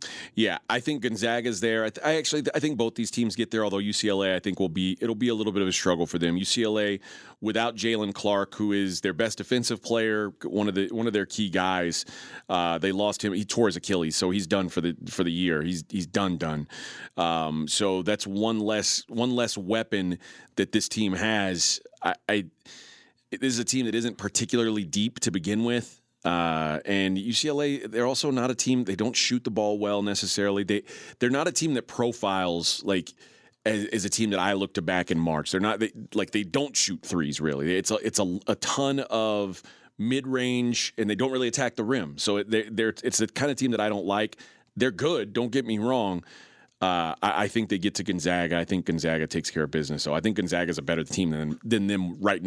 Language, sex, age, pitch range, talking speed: English, male, 30-49, 95-115 Hz, 230 wpm